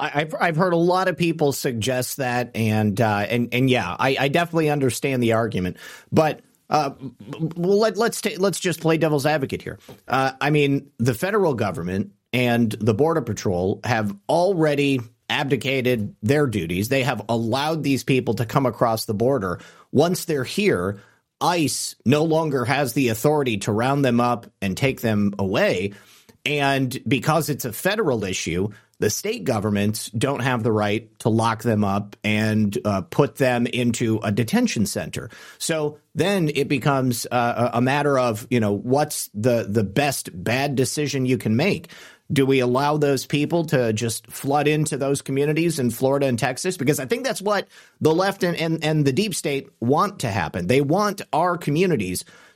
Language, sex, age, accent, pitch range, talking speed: English, male, 40-59, American, 115-150 Hz, 175 wpm